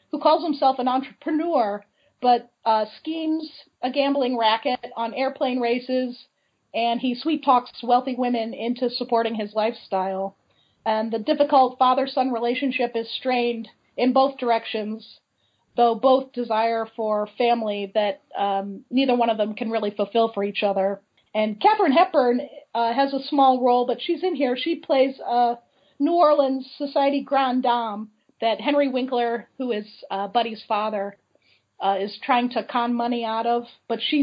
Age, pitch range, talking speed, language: 40-59, 220-270 Hz, 155 wpm, English